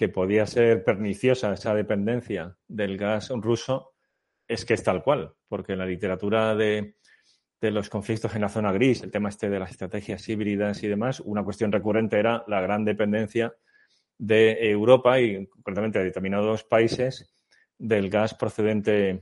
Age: 30-49